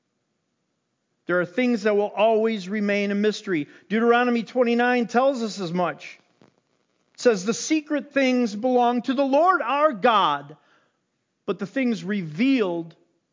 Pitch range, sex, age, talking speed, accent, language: 195-240 Hz, male, 50-69, 135 wpm, American, English